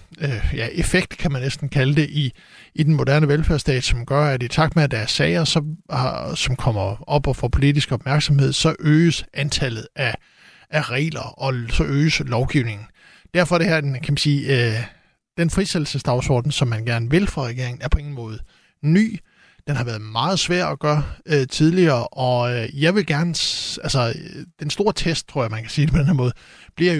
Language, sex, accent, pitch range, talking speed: Danish, male, native, 130-155 Hz, 210 wpm